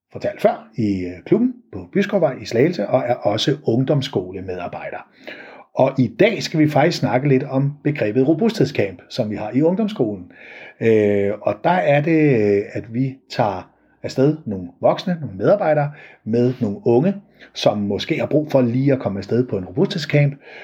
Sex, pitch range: male, 115-155 Hz